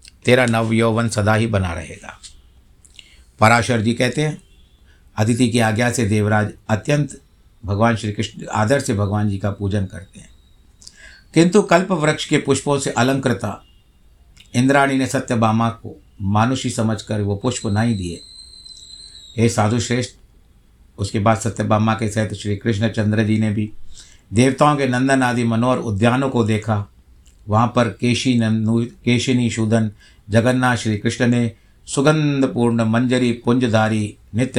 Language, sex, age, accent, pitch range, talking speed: Hindi, male, 60-79, native, 100-120 Hz, 130 wpm